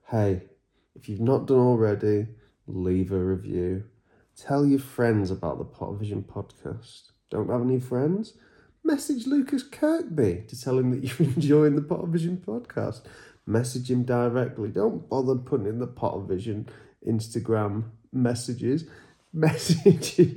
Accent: British